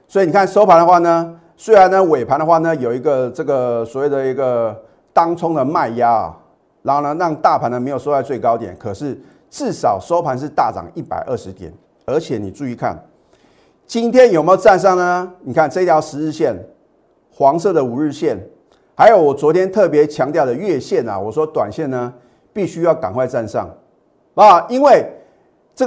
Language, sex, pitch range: Chinese, male, 130-185 Hz